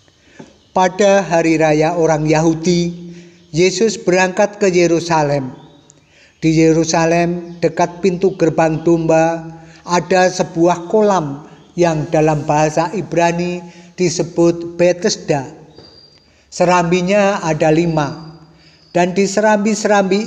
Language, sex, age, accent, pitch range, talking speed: Indonesian, male, 50-69, native, 160-195 Hz, 90 wpm